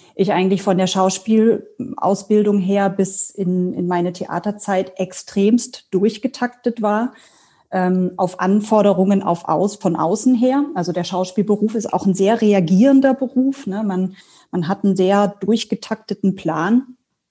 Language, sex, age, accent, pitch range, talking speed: German, female, 30-49, German, 190-230 Hz, 135 wpm